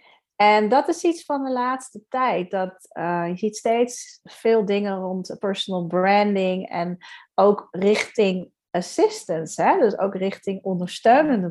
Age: 30-49